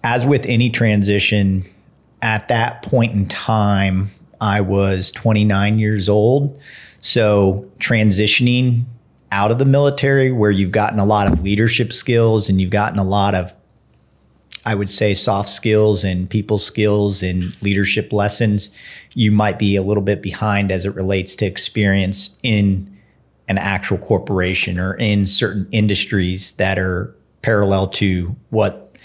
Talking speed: 145 wpm